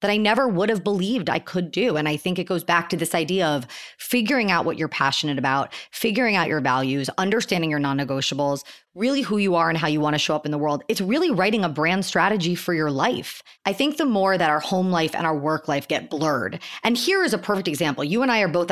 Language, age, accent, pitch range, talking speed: English, 30-49, American, 155-190 Hz, 255 wpm